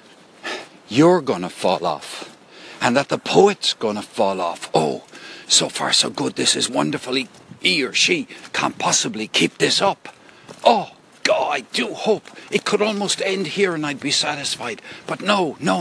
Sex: male